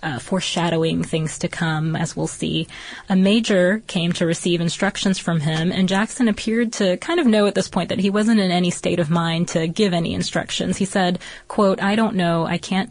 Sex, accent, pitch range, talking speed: female, American, 170-205 Hz, 215 wpm